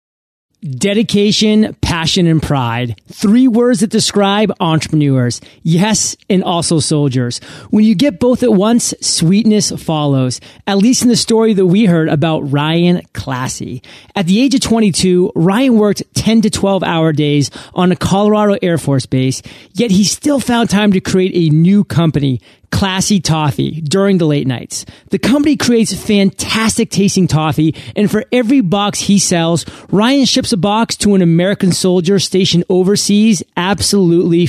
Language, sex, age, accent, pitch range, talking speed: English, male, 30-49, American, 160-215 Hz, 155 wpm